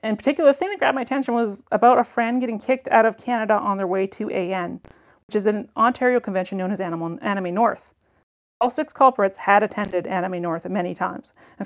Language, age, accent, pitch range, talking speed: English, 30-49, American, 195-235 Hz, 215 wpm